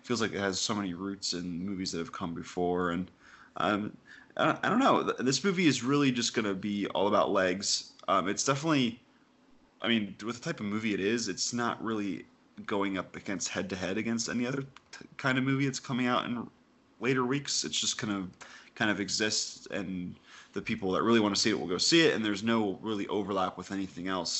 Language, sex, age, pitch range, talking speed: English, male, 20-39, 95-135 Hz, 220 wpm